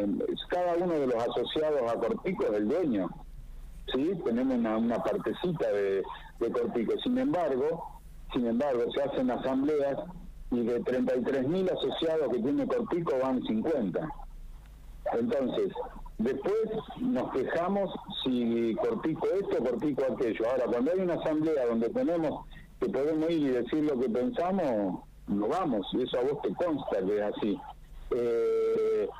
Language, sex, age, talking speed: Spanish, male, 60-79, 145 wpm